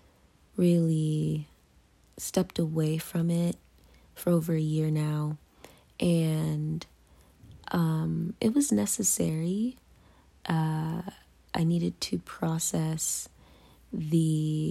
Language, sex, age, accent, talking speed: English, female, 20-39, American, 85 wpm